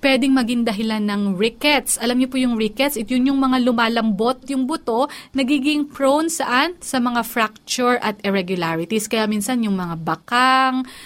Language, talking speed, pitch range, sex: Filipino, 165 wpm, 215-275 Hz, female